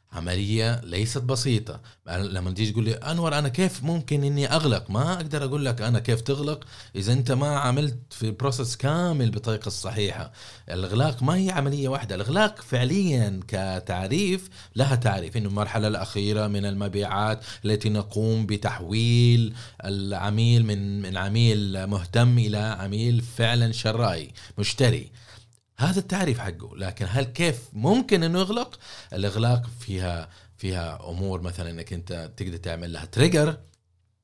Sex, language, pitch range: male, Arabic, 100-130 Hz